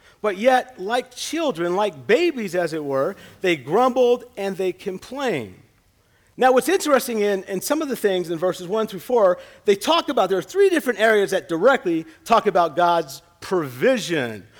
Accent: American